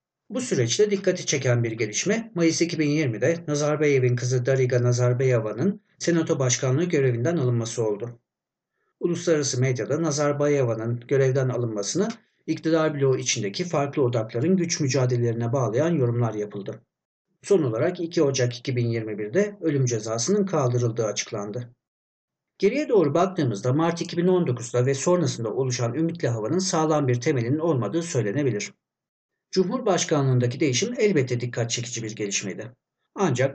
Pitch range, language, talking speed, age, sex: 120-160 Hz, Turkish, 115 wpm, 60-79, male